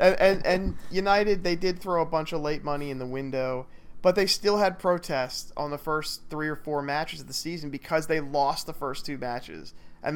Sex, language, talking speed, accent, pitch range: male, English, 225 wpm, American, 130-170 Hz